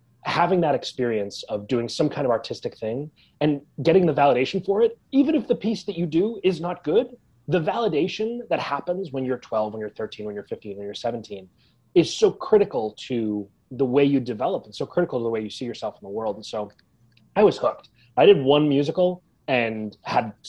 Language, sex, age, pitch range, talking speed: English, male, 30-49, 110-165 Hz, 215 wpm